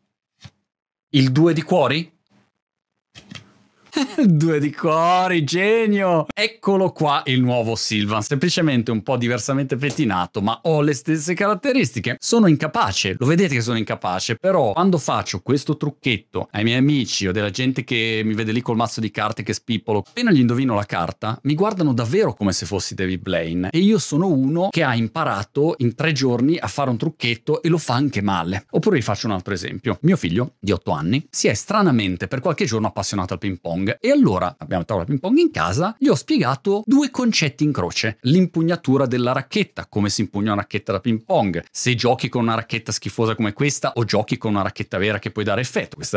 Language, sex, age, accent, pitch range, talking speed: Italian, male, 30-49, native, 105-155 Hz, 195 wpm